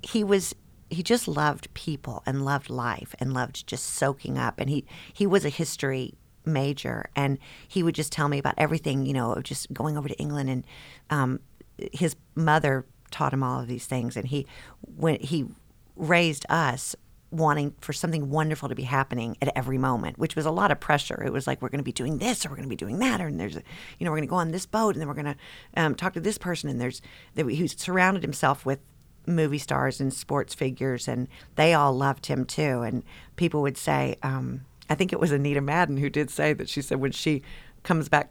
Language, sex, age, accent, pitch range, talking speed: English, female, 50-69, American, 135-160 Hz, 220 wpm